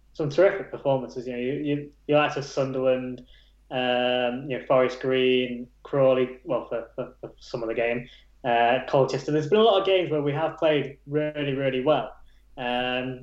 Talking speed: 180 wpm